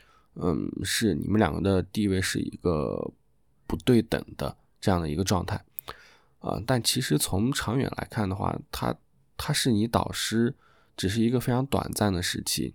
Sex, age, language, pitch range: male, 20-39, Chinese, 90-110 Hz